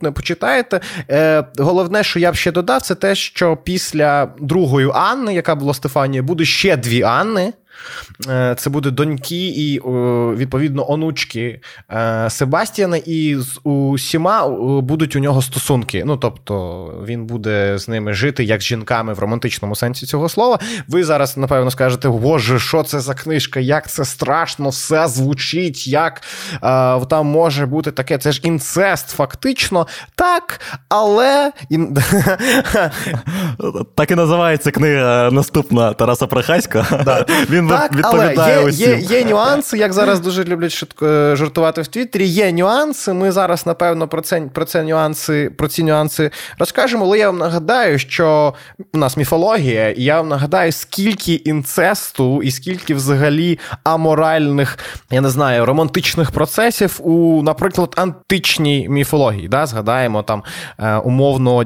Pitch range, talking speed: 130-170 Hz, 140 wpm